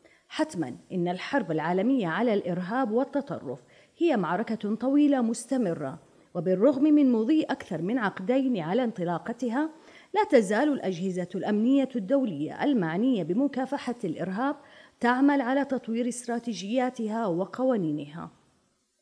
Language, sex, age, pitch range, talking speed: Arabic, female, 30-49, 185-265 Hz, 100 wpm